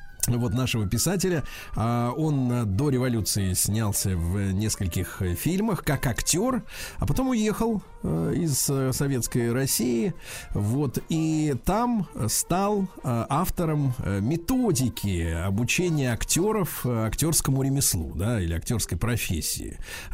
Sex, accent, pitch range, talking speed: male, native, 105-150 Hz, 85 wpm